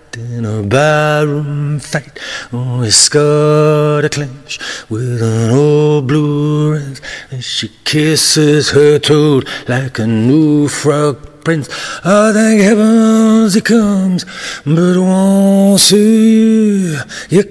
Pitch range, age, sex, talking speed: 145-200 Hz, 50-69, male, 115 wpm